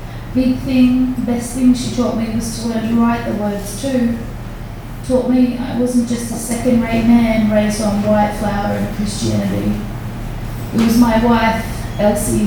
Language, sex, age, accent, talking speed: English, female, 20-39, Australian, 170 wpm